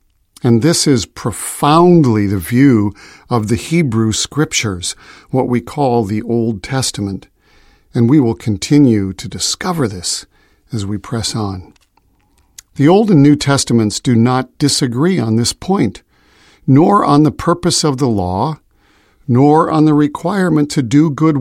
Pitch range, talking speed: 105-150 Hz, 145 wpm